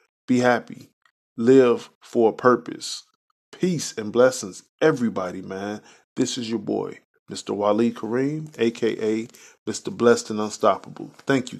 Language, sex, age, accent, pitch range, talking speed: English, male, 20-39, American, 105-140 Hz, 130 wpm